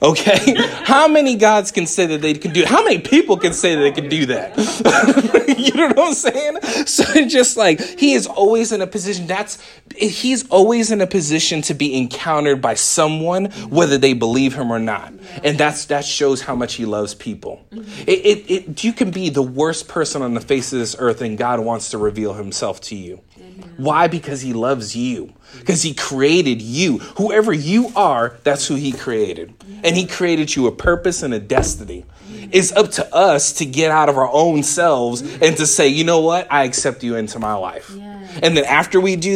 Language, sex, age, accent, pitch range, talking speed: English, male, 30-49, American, 135-205 Hz, 205 wpm